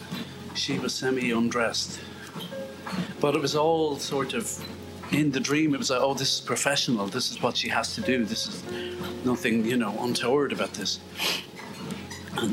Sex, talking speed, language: male, 170 wpm, English